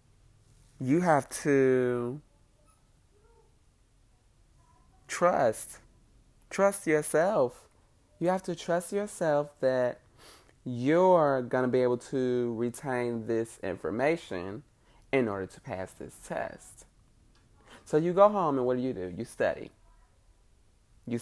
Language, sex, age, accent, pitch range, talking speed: English, male, 20-39, American, 110-140 Hz, 110 wpm